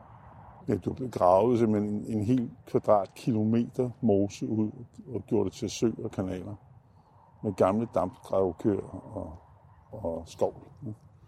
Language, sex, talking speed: Danish, male, 140 wpm